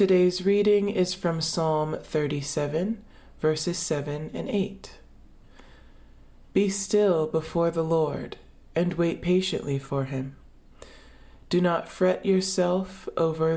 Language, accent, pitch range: English, American, 140-180 Hz